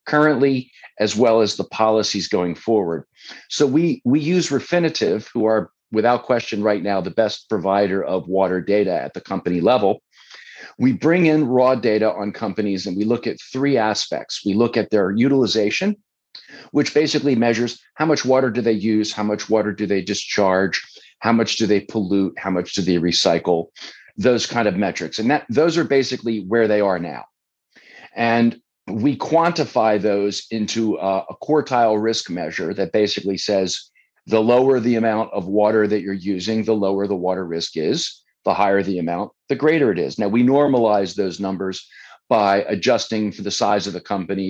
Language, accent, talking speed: English, American, 180 wpm